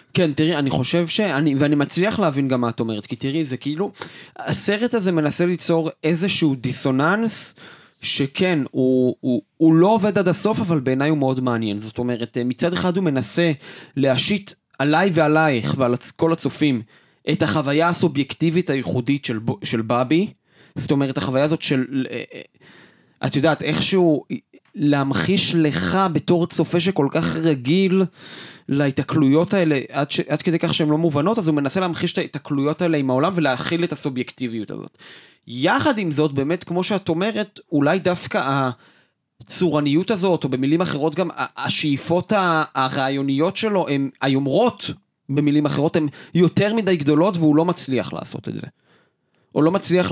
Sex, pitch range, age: male, 135-175 Hz, 30-49